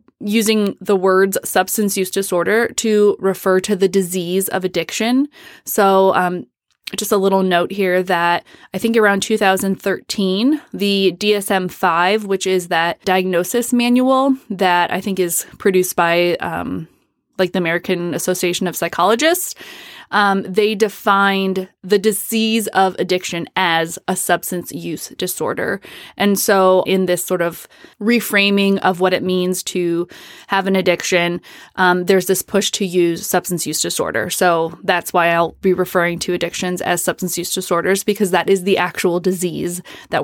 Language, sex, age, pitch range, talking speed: English, female, 20-39, 180-205 Hz, 150 wpm